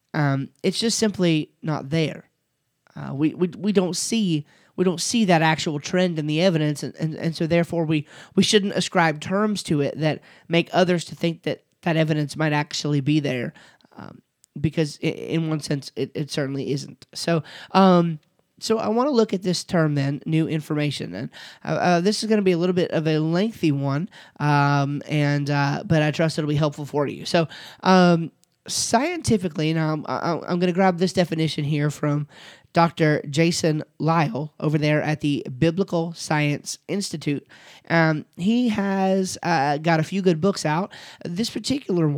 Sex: male